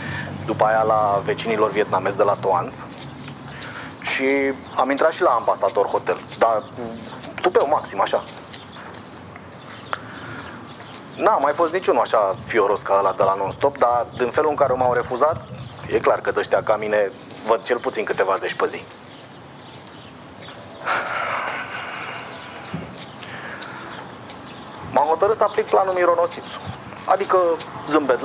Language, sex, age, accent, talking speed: Romanian, male, 30-49, native, 125 wpm